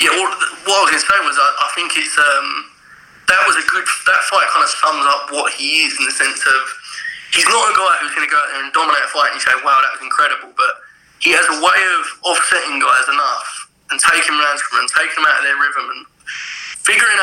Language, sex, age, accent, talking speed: English, male, 20-39, British, 260 wpm